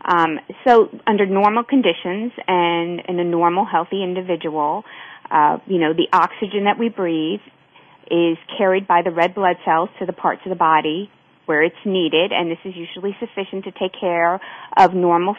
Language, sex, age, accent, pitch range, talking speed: English, female, 30-49, American, 175-205 Hz, 170 wpm